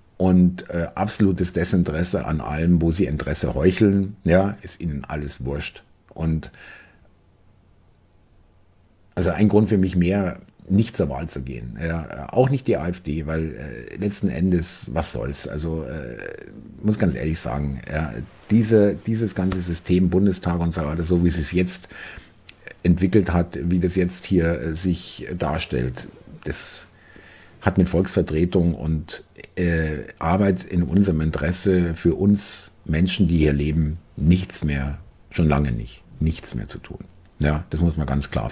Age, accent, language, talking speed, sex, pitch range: 50-69, German, German, 155 wpm, male, 80-100 Hz